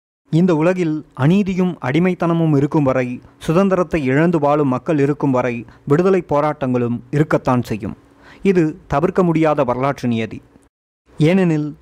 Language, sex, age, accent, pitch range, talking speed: Tamil, male, 30-49, native, 130-165 Hz, 110 wpm